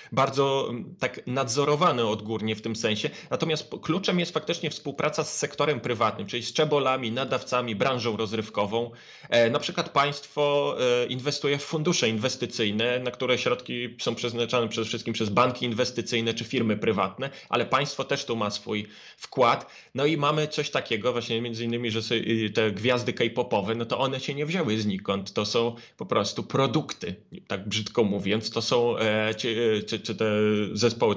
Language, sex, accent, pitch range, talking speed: Polish, male, native, 115-140 Hz, 165 wpm